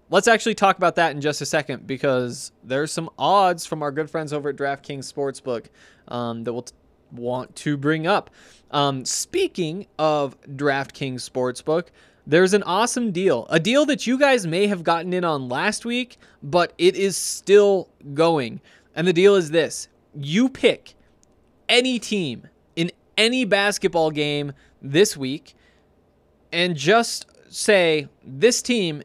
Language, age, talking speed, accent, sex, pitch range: English, 20-39, 155 wpm, American, male, 140-185 Hz